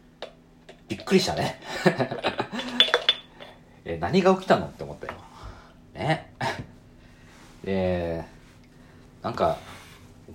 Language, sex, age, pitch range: Japanese, male, 40-59, 80-95 Hz